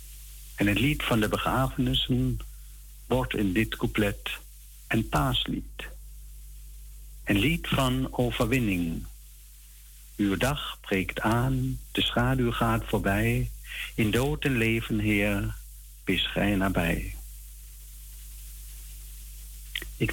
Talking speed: 100 wpm